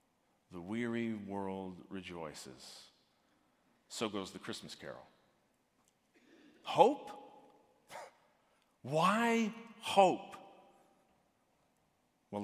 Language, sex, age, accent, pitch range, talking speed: English, male, 40-59, American, 150-230 Hz, 65 wpm